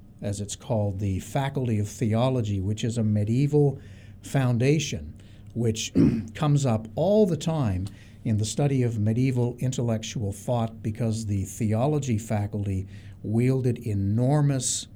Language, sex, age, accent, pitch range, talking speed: English, male, 60-79, American, 105-130 Hz, 125 wpm